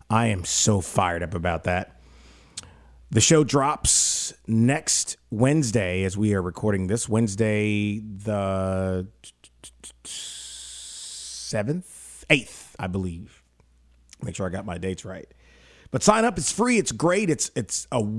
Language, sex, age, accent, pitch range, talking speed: English, male, 30-49, American, 95-130 Hz, 130 wpm